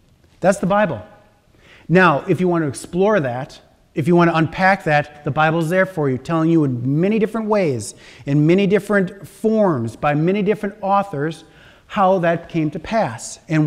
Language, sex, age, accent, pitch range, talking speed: English, male, 40-59, American, 145-195 Hz, 180 wpm